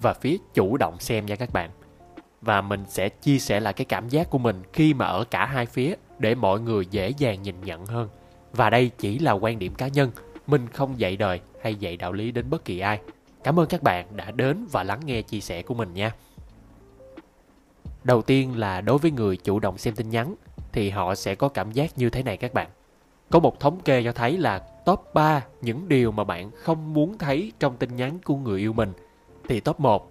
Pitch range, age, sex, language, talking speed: 100-140 Hz, 20-39, male, Vietnamese, 230 wpm